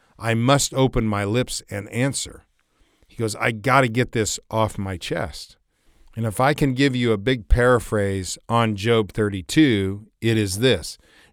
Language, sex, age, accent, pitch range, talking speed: English, male, 40-59, American, 100-125 Hz, 165 wpm